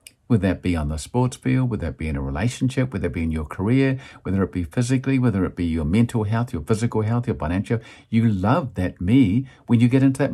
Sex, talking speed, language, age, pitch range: male, 250 wpm, English, 50-69, 90-125 Hz